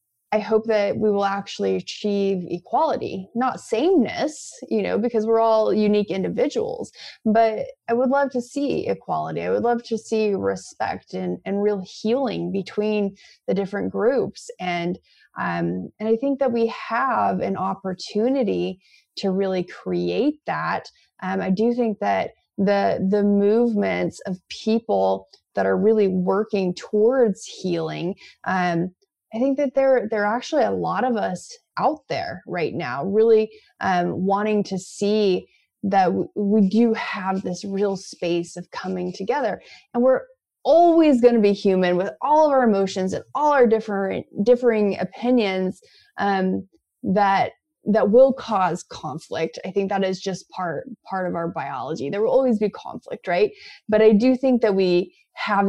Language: English